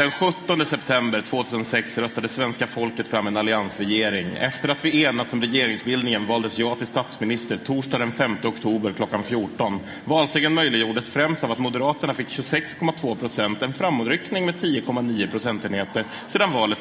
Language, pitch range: Swedish, 115-160 Hz